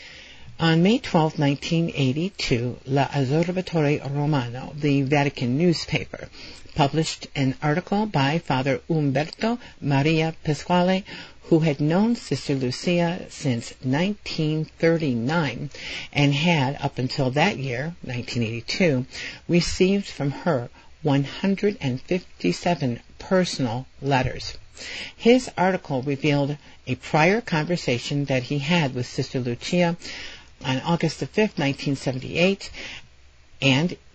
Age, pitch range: 60-79, 130-170 Hz